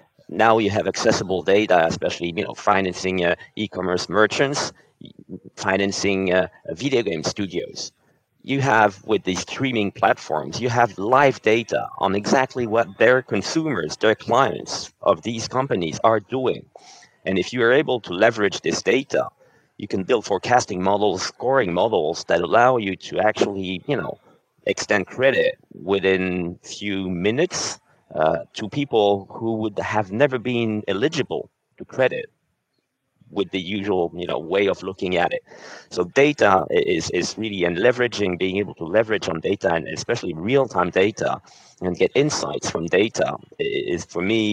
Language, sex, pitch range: English, male, 90-115 Hz